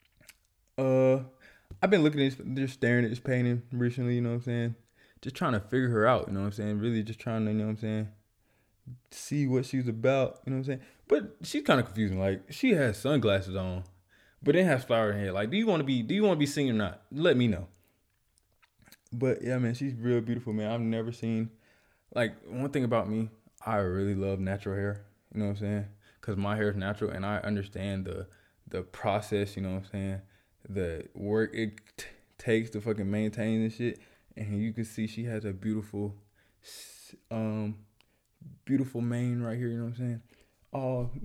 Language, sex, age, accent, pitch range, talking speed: English, male, 20-39, American, 105-130 Hz, 220 wpm